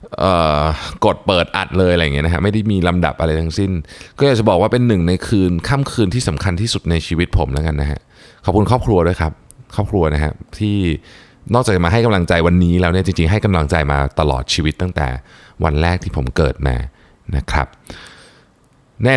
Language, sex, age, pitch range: Thai, male, 20-39, 80-105 Hz